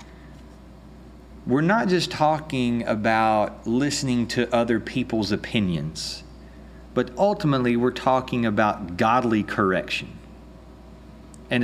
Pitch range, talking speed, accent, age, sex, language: 95-125 Hz, 95 wpm, American, 30-49, male, English